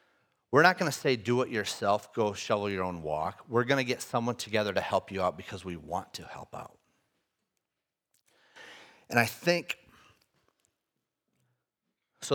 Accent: American